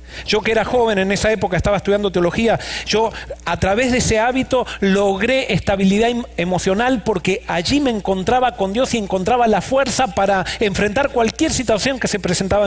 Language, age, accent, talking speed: Spanish, 40-59, Argentinian, 170 wpm